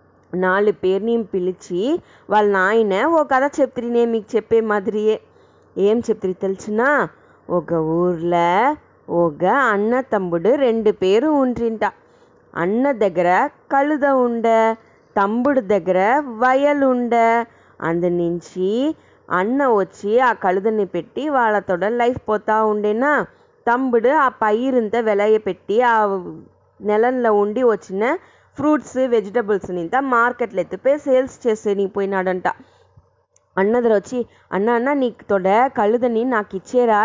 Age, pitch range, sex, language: 20-39, 195-250 Hz, female, English